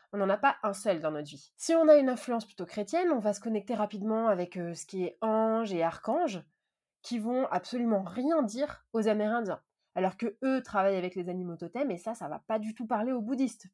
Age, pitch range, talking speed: 20-39, 185-235 Hz, 230 wpm